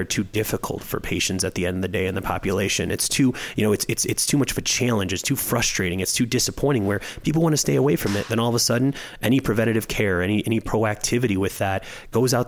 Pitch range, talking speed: 95-115 Hz, 265 wpm